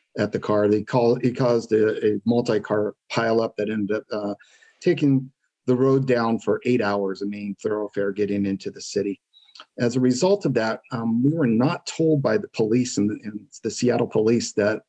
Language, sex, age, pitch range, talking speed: English, male, 40-59, 105-125 Hz, 200 wpm